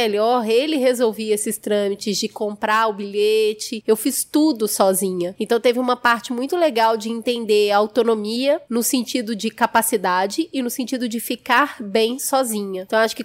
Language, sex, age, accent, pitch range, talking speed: Portuguese, female, 20-39, Brazilian, 215-260 Hz, 170 wpm